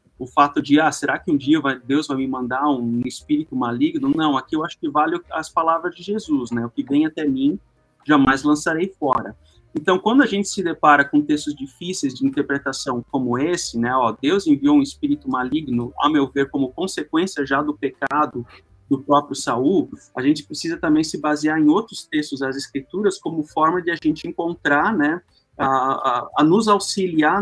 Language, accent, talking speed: Portuguese, Brazilian, 195 wpm